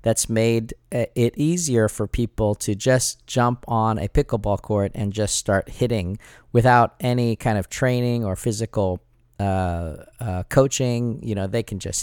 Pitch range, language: 105-130 Hz, English